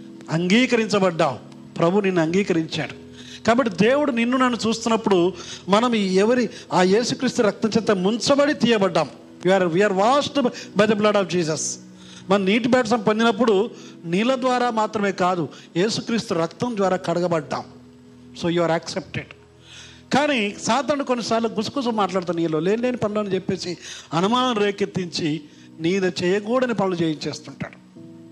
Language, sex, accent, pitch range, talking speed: Telugu, male, native, 155-220 Hz, 120 wpm